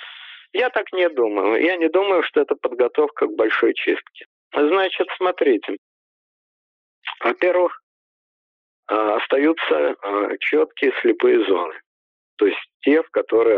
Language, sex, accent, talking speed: Russian, male, native, 115 wpm